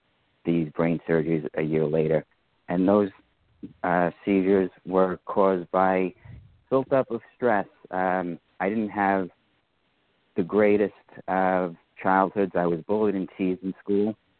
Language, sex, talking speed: English, male, 135 wpm